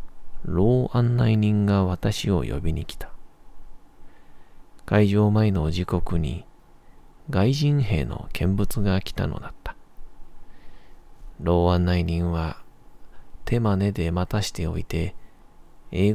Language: Japanese